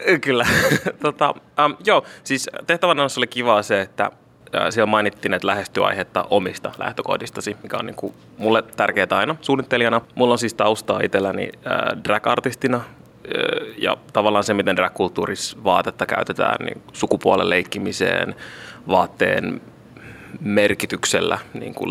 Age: 20-39